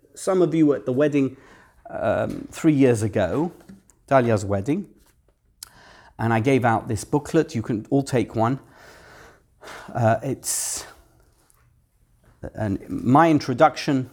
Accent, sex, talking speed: British, male, 125 wpm